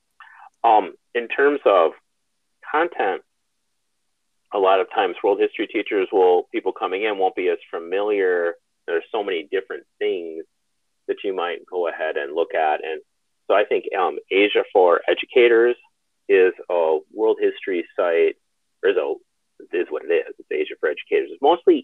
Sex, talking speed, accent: male, 155 wpm, American